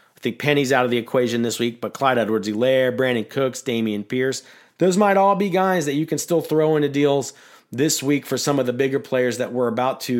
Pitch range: 130-160 Hz